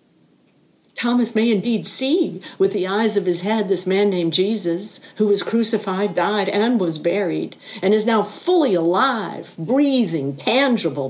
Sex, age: female, 60-79